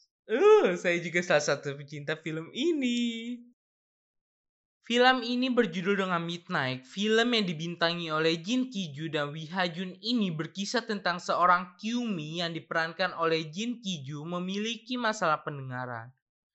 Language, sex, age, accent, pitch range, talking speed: Indonesian, male, 20-39, native, 165-215 Hz, 125 wpm